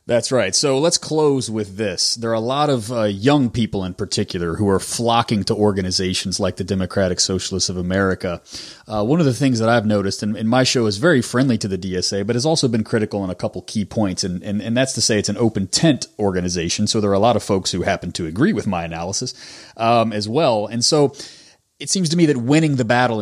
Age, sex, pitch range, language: 30-49, male, 100-130 Hz, English